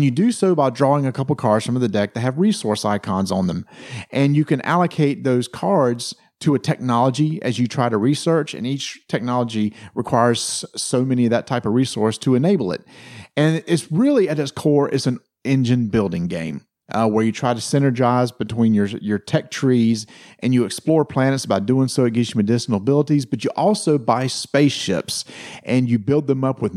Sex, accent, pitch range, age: male, American, 115-150 Hz, 40-59